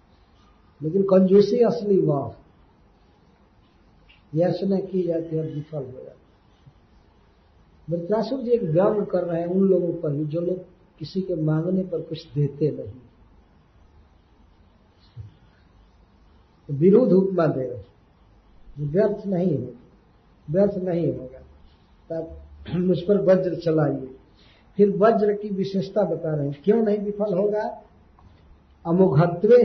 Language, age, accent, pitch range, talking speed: Hindi, 50-69, native, 135-205 Hz, 105 wpm